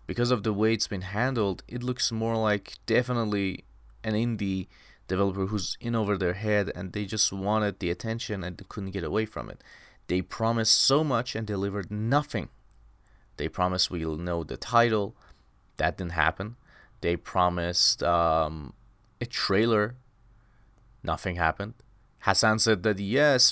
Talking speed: 155 wpm